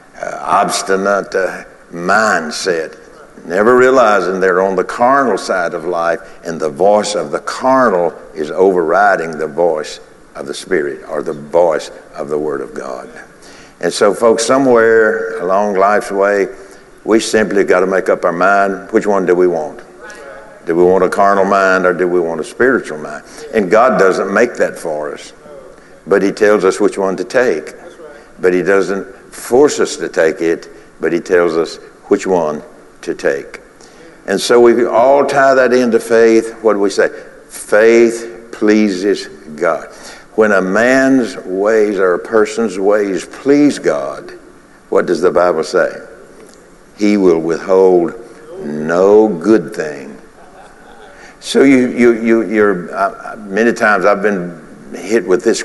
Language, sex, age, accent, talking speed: English, male, 60-79, American, 160 wpm